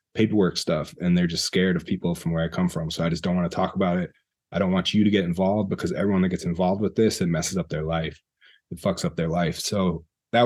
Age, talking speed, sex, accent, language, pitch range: 20-39, 275 wpm, male, American, English, 90-110 Hz